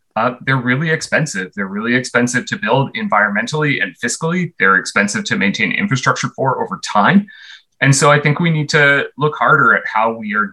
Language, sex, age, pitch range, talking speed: English, male, 30-49, 120-150 Hz, 190 wpm